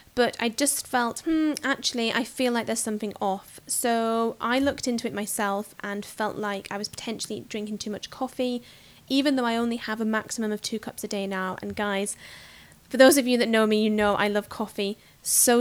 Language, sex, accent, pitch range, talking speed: English, female, British, 205-245 Hz, 215 wpm